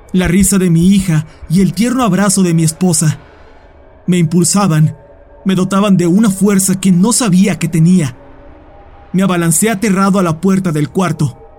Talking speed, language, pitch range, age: 165 wpm, Spanish, 150-195 Hz, 30-49